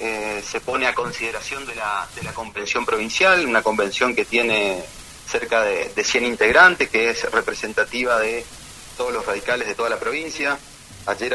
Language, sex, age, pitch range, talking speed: Spanish, male, 30-49, 110-145 Hz, 170 wpm